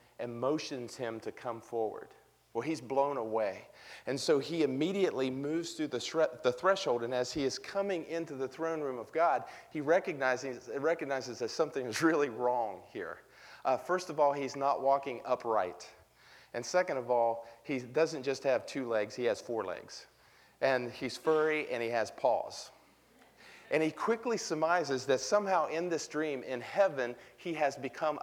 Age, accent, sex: 40-59, American, male